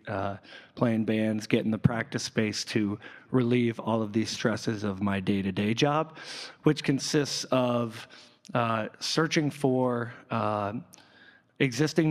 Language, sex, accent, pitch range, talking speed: English, male, American, 110-130 Hz, 125 wpm